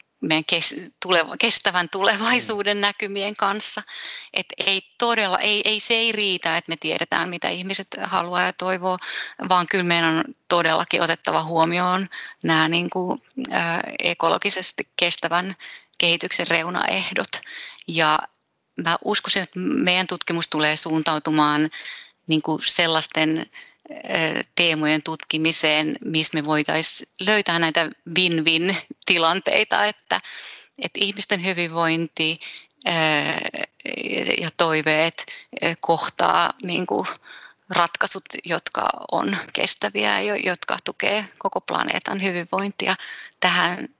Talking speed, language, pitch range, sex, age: 100 wpm, Finnish, 165-205 Hz, female, 30-49